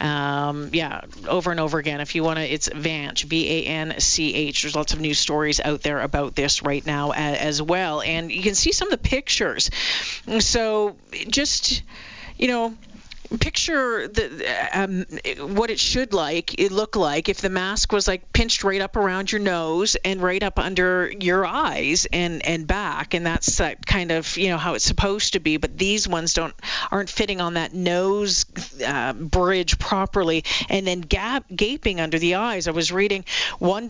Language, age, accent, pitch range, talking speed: English, 40-59, American, 165-210 Hz, 180 wpm